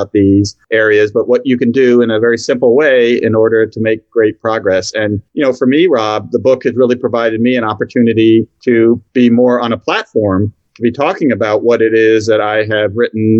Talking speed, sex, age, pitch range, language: 220 wpm, male, 40-59, 110-125 Hz, English